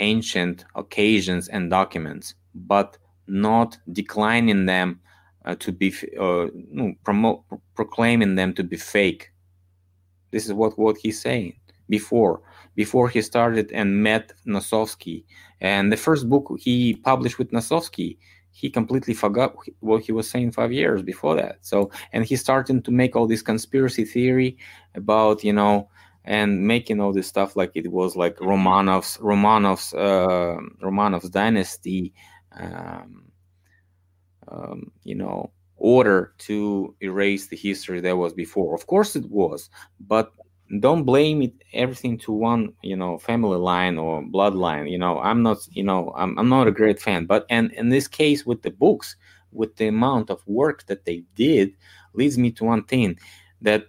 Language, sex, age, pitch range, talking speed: English, male, 20-39, 90-115 Hz, 155 wpm